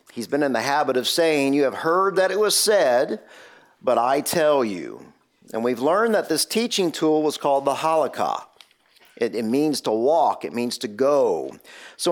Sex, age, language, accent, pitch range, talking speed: male, 50-69, English, American, 140-205 Hz, 195 wpm